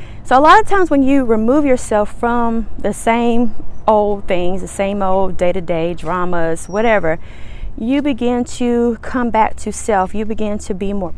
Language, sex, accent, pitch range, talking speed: English, female, American, 185-235 Hz, 170 wpm